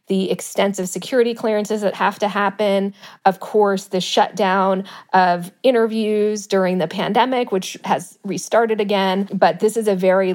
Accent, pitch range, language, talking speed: American, 185-215 Hz, English, 150 wpm